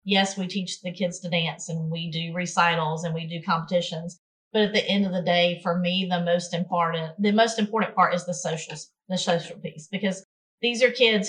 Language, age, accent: English, 30-49, American